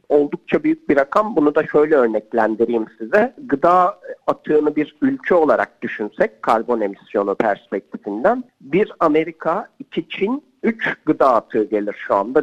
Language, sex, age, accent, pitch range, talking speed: Turkish, male, 50-69, native, 125-205 Hz, 135 wpm